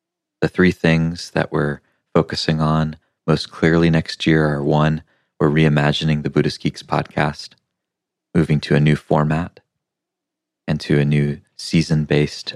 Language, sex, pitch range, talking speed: English, male, 75-80 Hz, 140 wpm